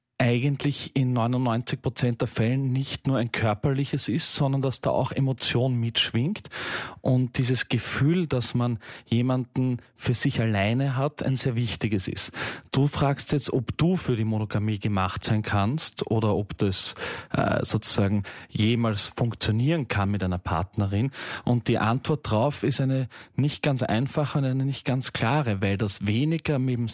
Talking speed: 160 wpm